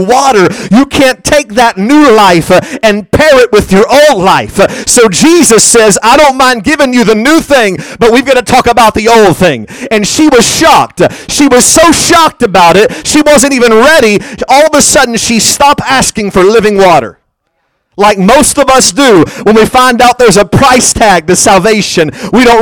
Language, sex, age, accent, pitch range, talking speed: English, male, 40-59, American, 145-230 Hz, 200 wpm